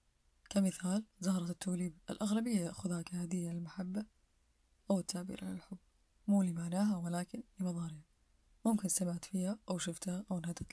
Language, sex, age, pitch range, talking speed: Arabic, female, 20-39, 170-190 Hz, 125 wpm